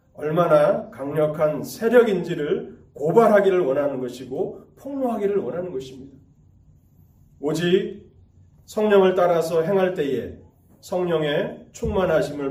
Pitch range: 115-160 Hz